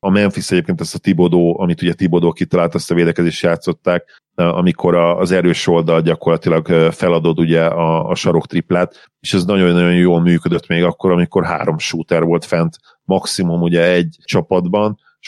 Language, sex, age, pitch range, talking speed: Hungarian, male, 40-59, 85-95 Hz, 160 wpm